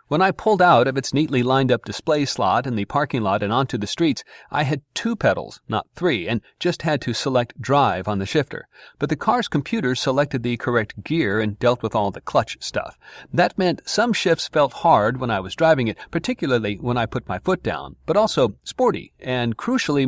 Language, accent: English, American